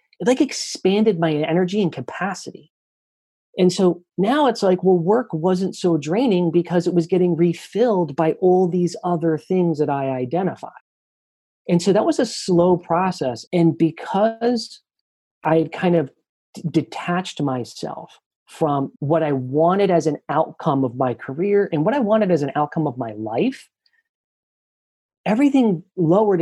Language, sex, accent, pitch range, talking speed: English, male, American, 130-180 Hz, 150 wpm